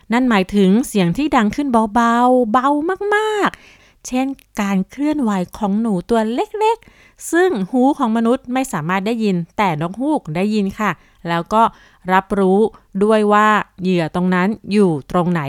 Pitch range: 195-255 Hz